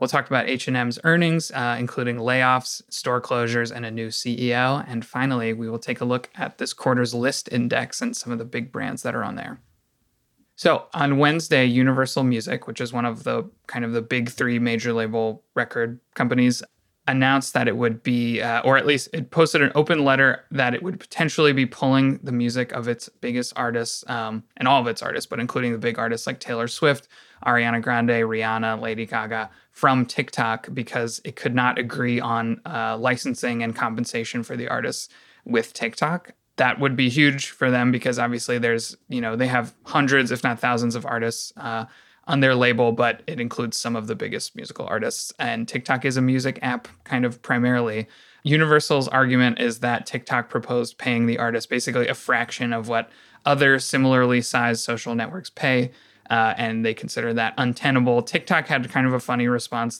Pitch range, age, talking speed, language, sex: 115-130 Hz, 20-39, 190 wpm, English, male